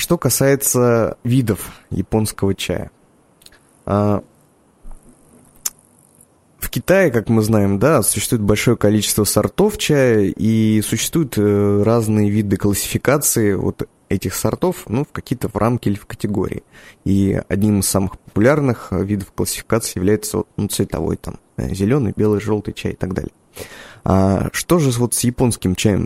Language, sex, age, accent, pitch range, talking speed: Russian, male, 20-39, native, 95-115 Hz, 130 wpm